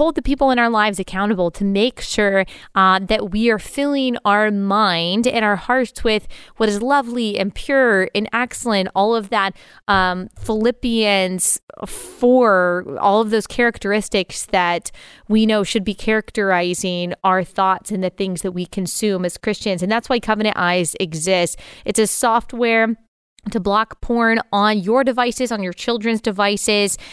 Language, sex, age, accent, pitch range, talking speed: English, female, 20-39, American, 195-230 Hz, 160 wpm